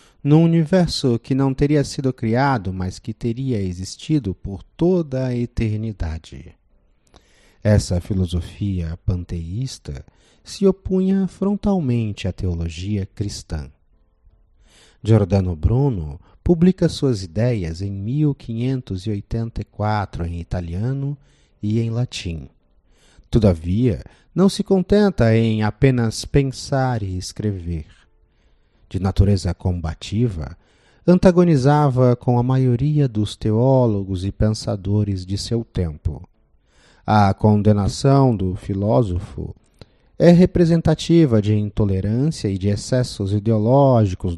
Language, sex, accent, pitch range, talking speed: Portuguese, male, Brazilian, 95-130 Hz, 95 wpm